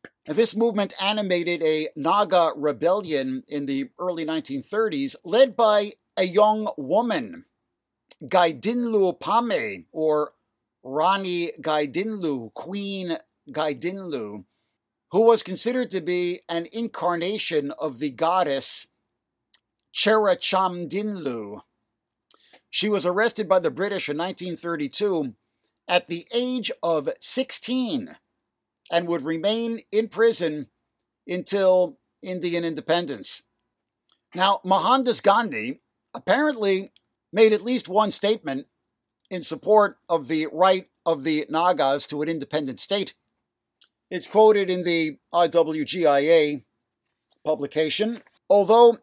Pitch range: 155-215 Hz